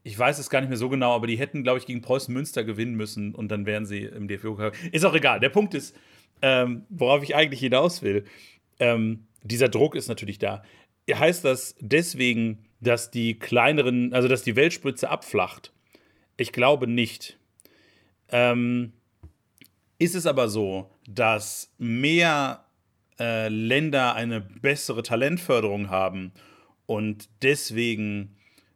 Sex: male